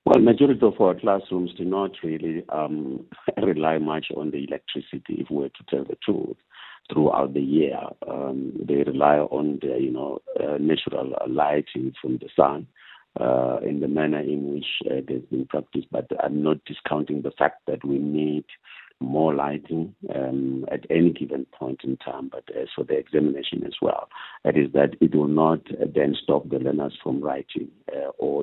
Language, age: English, 60-79